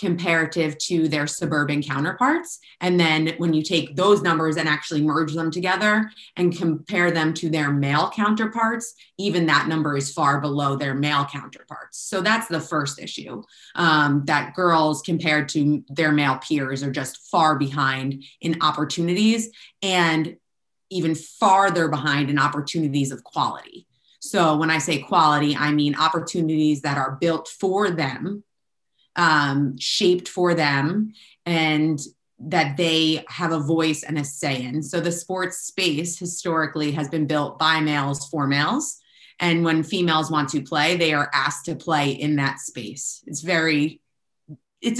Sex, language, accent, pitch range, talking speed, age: female, English, American, 145-170 Hz, 150 wpm, 30-49